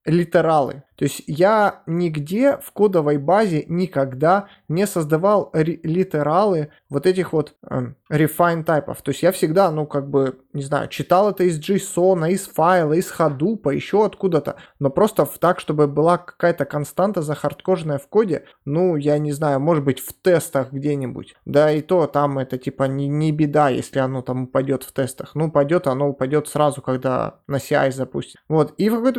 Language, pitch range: Russian, 145-185 Hz